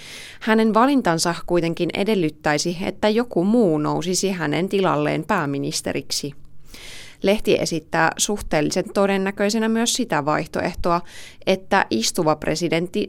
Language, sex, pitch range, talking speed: Finnish, female, 160-205 Hz, 95 wpm